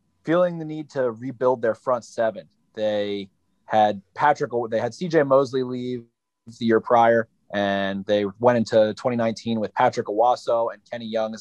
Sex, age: male, 30-49